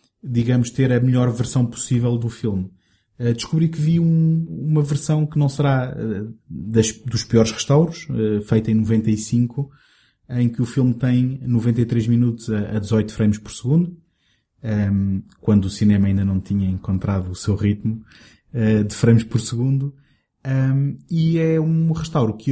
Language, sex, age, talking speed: Portuguese, male, 20-39, 140 wpm